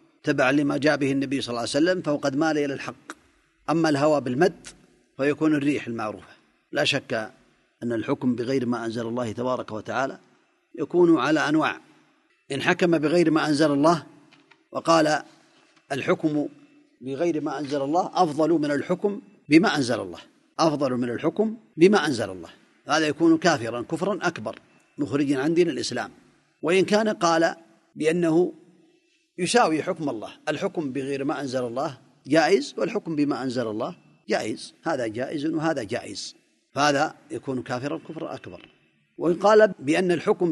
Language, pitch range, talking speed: Arabic, 140-195 Hz, 140 wpm